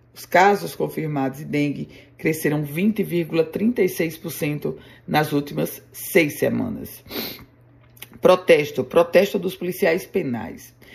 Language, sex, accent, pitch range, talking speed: Portuguese, female, Brazilian, 150-190 Hz, 90 wpm